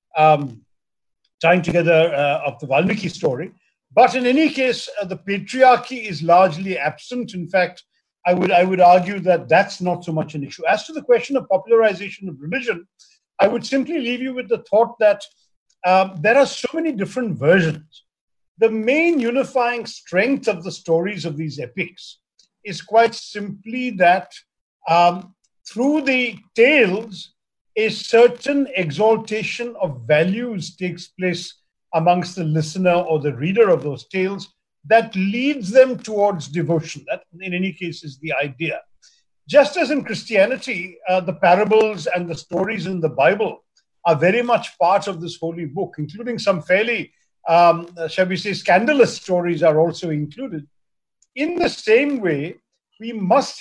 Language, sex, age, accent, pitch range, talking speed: Hindi, male, 50-69, native, 170-235 Hz, 160 wpm